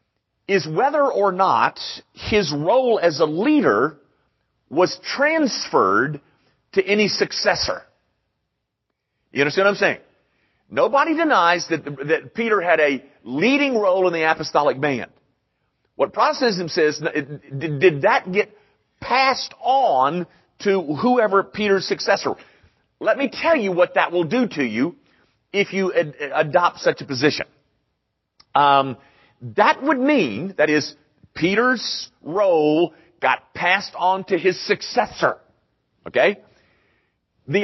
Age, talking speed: 40-59, 125 wpm